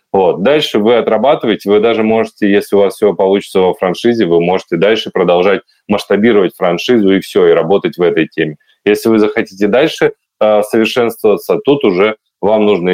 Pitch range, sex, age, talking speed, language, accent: 90-110 Hz, male, 20-39, 170 wpm, Russian, native